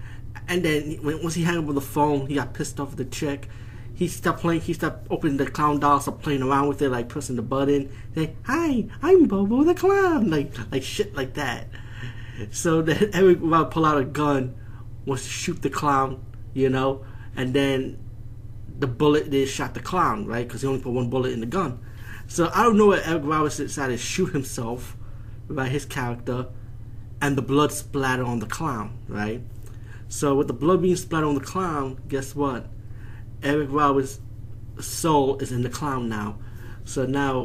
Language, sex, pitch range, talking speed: English, male, 115-145 Hz, 195 wpm